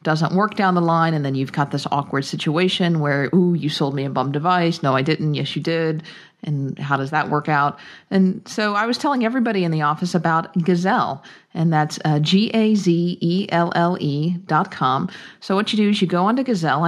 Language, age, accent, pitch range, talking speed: English, 50-69, American, 150-190 Hz, 200 wpm